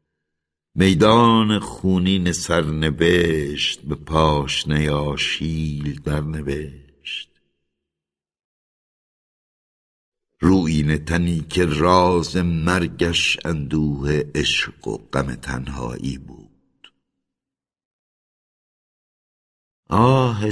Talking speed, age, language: 60 wpm, 60-79, Persian